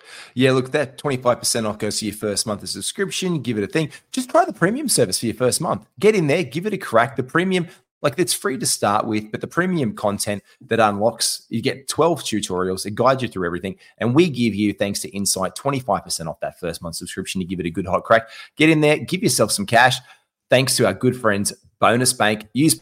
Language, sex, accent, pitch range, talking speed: English, male, Australian, 105-145 Hz, 235 wpm